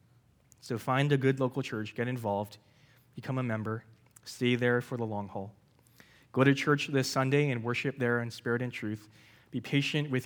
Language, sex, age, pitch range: English, male, 20-39, 115-135 Hz